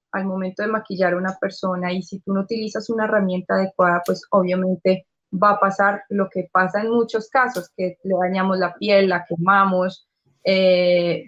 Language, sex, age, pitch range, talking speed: Spanish, female, 20-39, 185-220 Hz, 180 wpm